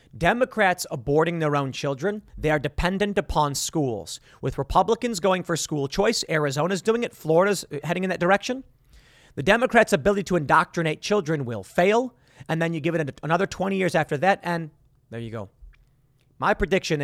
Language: English